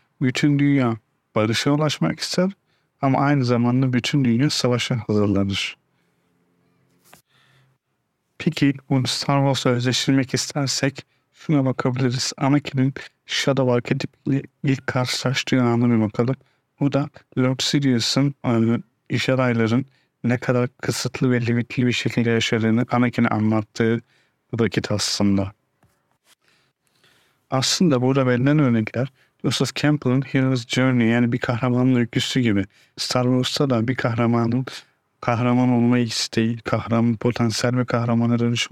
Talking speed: 110 wpm